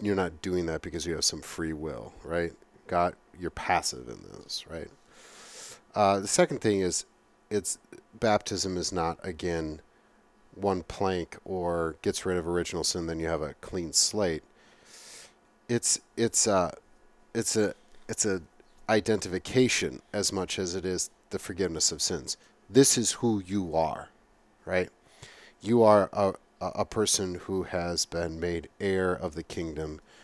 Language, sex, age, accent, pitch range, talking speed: English, male, 40-59, American, 85-105 Hz, 155 wpm